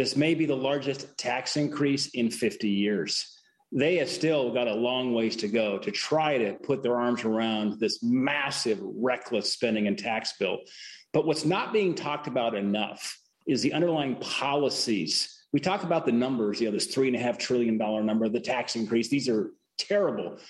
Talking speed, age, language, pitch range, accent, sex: 180 wpm, 40-59, English, 125-160 Hz, American, male